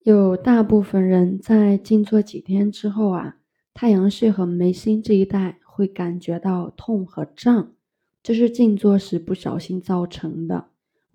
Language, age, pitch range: Chinese, 20-39, 170-200 Hz